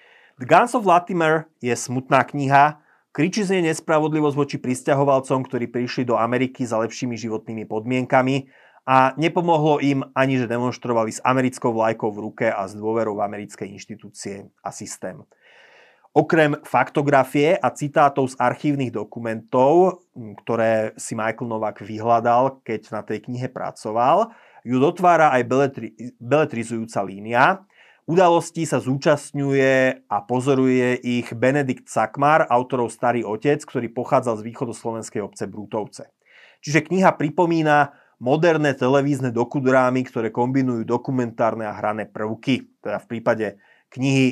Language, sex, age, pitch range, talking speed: Slovak, male, 30-49, 115-145 Hz, 130 wpm